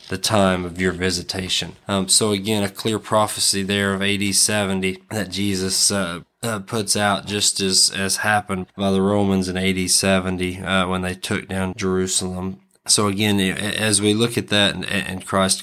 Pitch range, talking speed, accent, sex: 95-100 Hz, 180 wpm, American, male